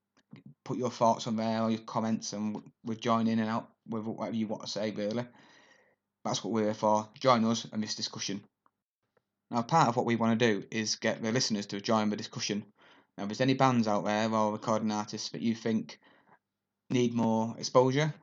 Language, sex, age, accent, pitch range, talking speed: English, male, 20-39, British, 105-120 Hz, 210 wpm